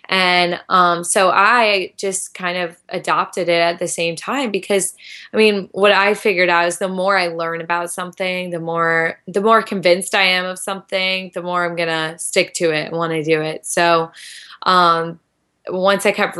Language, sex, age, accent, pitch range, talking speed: English, female, 10-29, American, 165-185 Hz, 200 wpm